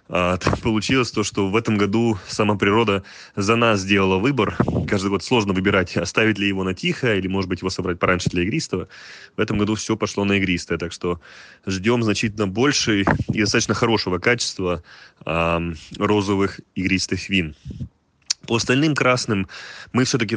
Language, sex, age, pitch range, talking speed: Russian, male, 20-39, 95-115 Hz, 155 wpm